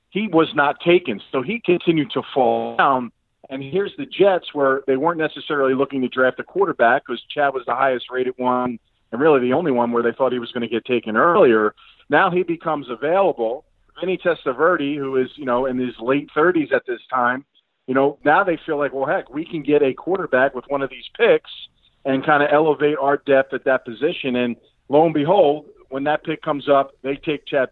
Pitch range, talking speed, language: 130-150 Hz, 215 wpm, English